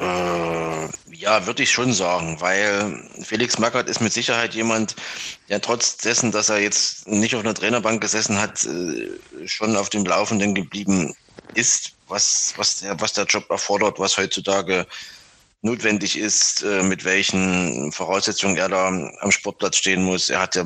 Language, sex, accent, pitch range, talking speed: German, male, German, 95-110 Hz, 155 wpm